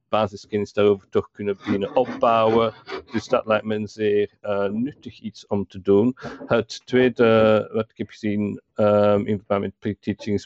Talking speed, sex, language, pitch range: 170 wpm, male, Dutch, 100-110 Hz